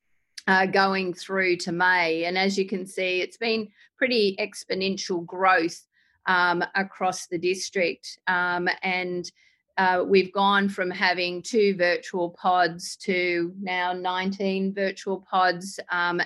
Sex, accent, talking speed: female, Australian, 130 wpm